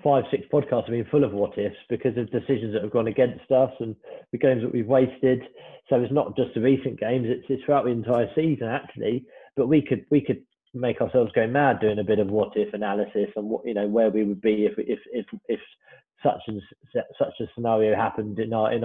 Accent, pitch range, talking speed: British, 115-135 Hz, 235 wpm